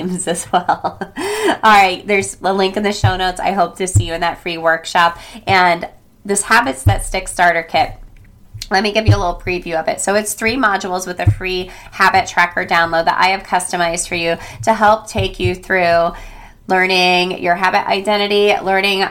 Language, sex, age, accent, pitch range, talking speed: English, female, 20-39, American, 170-195 Hz, 195 wpm